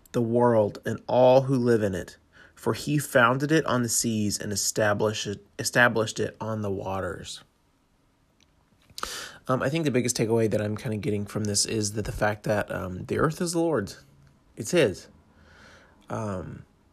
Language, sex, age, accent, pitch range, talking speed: English, male, 30-49, American, 105-125 Hz, 175 wpm